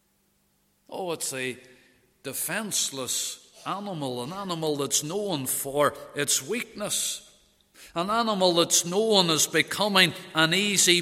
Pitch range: 170-215 Hz